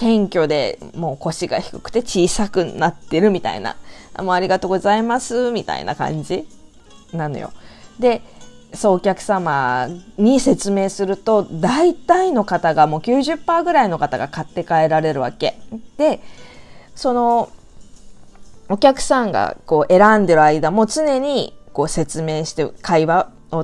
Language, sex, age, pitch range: Japanese, female, 20-39, 165-245 Hz